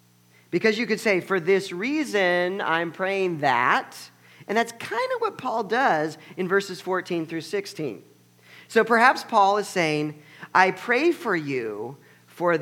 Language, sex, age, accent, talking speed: English, male, 40-59, American, 150 wpm